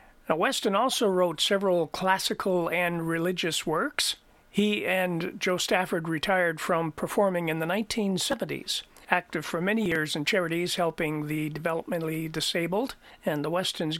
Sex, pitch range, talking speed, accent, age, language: male, 160-195 Hz, 135 wpm, American, 50-69, English